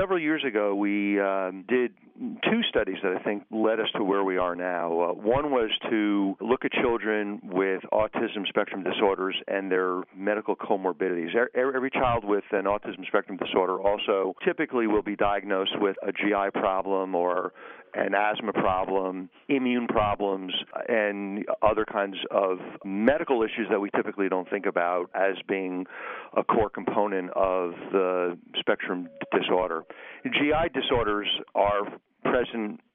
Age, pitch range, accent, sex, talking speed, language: 50-69, 90-110 Hz, American, male, 150 wpm, English